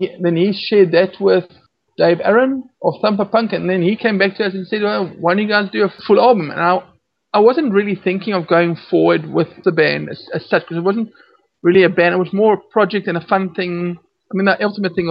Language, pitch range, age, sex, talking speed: English, 165-200 Hz, 50-69, male, 250 wpm